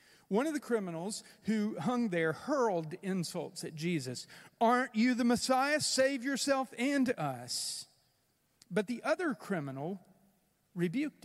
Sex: male